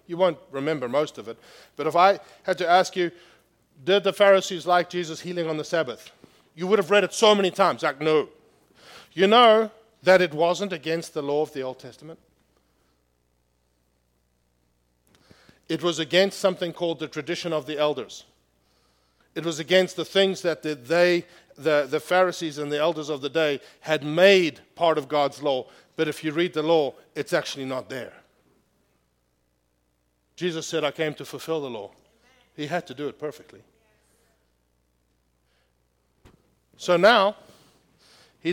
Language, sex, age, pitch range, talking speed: English, male, 50-69, 130-180 Hz, 160 wpm